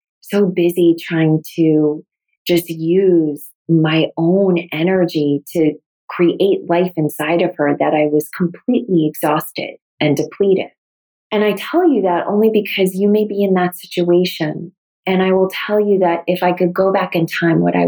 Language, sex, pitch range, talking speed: English, female, 160-185 Hz, 170 wpm